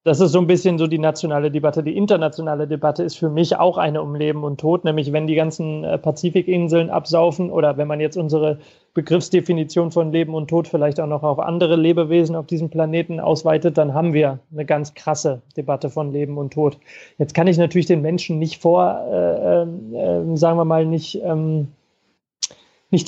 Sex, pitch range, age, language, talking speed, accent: male, 155-175 Hz, 30-49, German, 190 wpm, German